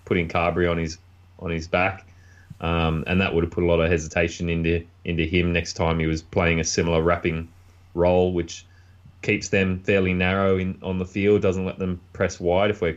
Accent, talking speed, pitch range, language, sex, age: Australian, 210 wpm, 85-95 Hz, English, male, 20-39